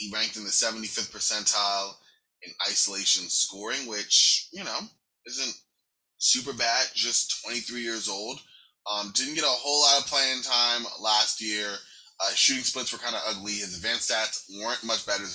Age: 20-39